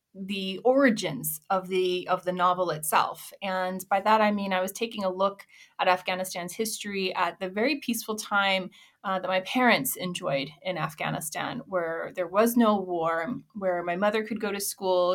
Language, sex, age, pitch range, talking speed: English, female, 20-39, 180-215 Hz, 180 wpm